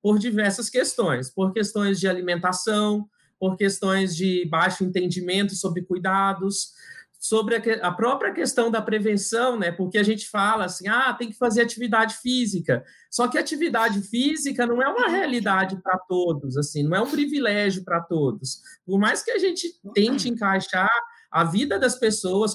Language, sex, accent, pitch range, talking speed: Portuguese, male, Brazilian, 190-240 Hz, 165 wpm